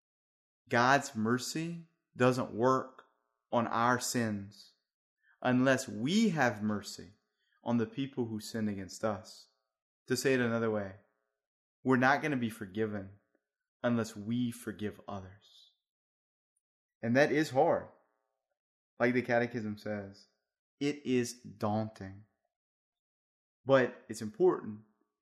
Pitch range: 100-130 Hz